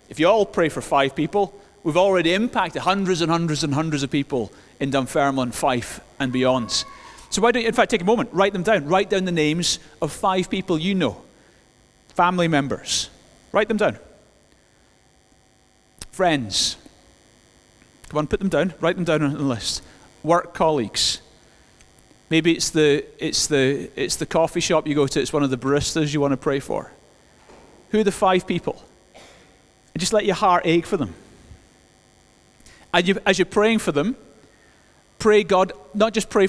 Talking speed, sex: 170 wpm, male